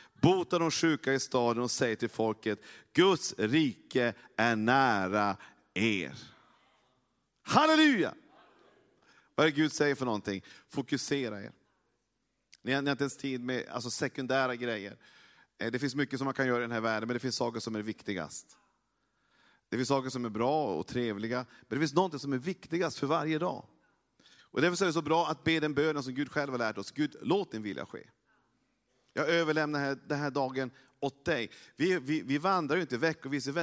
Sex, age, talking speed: male, 40-59, 185 wpm